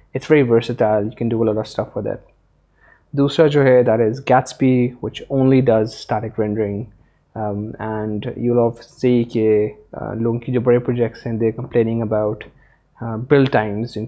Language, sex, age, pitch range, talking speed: Urdu, male, 20-39, 110-125 Hz, 160 wpm